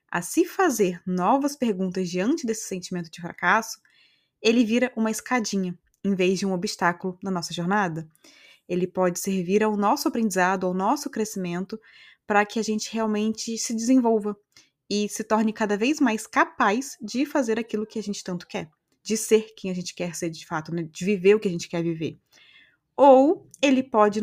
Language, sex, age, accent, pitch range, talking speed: Portuguese, female, 20-39, Brazilian, 190-230 Hz, 185 wpm